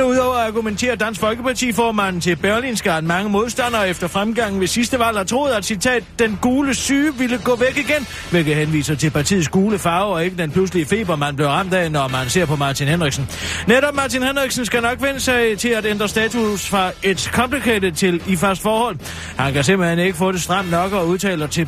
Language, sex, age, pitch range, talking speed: Danish, male, 30-49, 170-220 Hz, 220 wpm